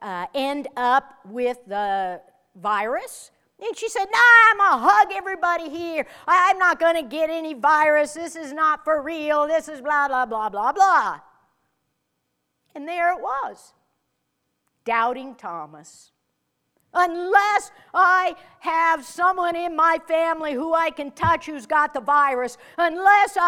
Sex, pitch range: female, 250-355 Hz